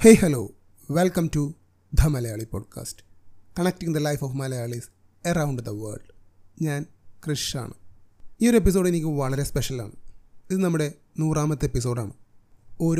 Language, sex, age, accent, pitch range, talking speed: Malayalam, male, 30-49, native, 125-155 Hz, 135 wpm